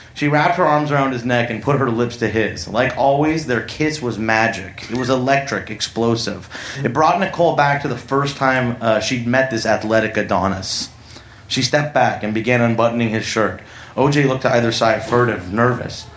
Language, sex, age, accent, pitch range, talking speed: English, male, 30-49, American, 110-145 Hz, 195 wpm